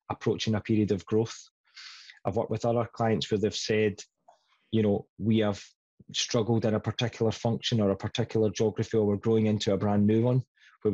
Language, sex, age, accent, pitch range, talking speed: English, male, 20-39, British, 100-120 Hz, 190 wpm